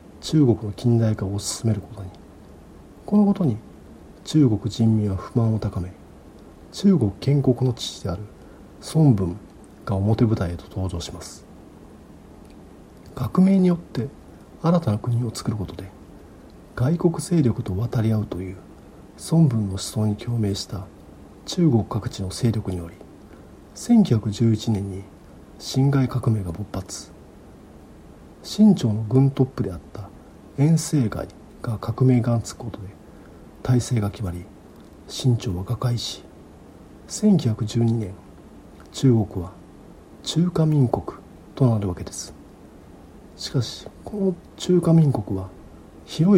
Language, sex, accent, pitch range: Japanese, male, native, 95-130 Hz